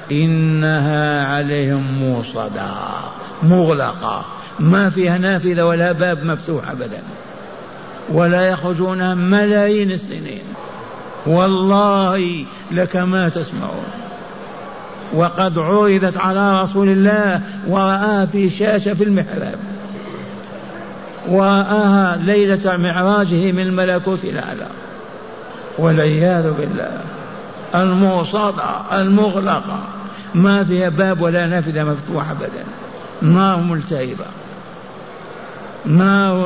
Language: Arabic